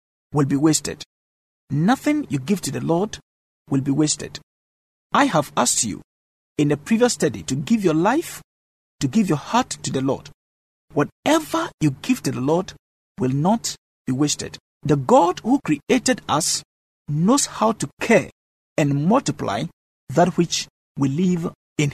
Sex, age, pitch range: male, 50-69, 135-205 Hz